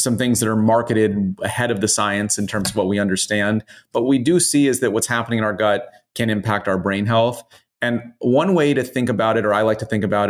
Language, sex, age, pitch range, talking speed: English, male, 30-49, 110-130 Hz, 255 wpm